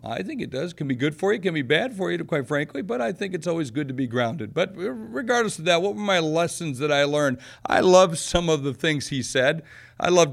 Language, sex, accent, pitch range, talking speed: English, male, American, 130-170 Hz, 285 wpm